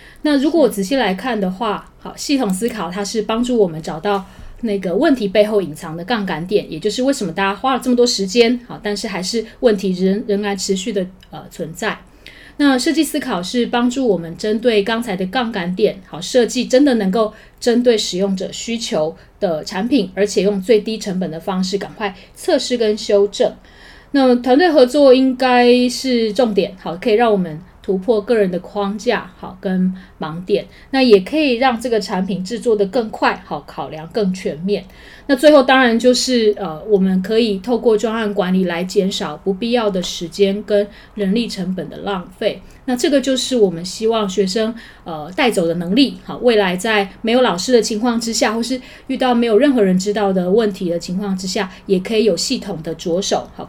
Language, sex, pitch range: Chinese, female, 190-240 Hz